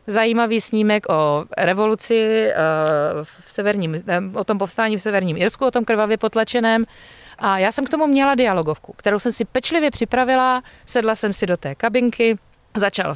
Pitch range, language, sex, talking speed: 205-255 Hz, Czech, female, 170 wpm